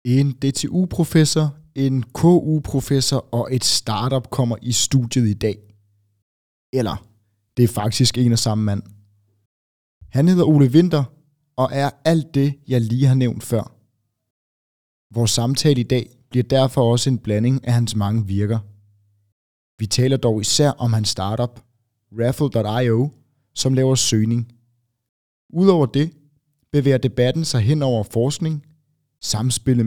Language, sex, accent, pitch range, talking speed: Danish, male, native, 105-135 Hz, 135 wpm